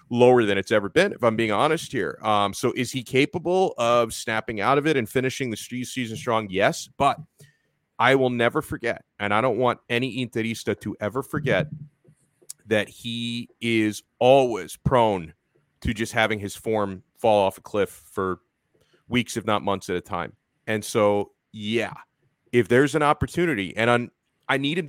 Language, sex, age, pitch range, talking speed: English, male, 30-49, 110-150 Hz, 180 wpm